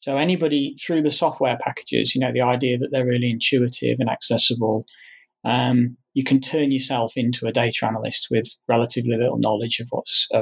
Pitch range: 125-155 Hz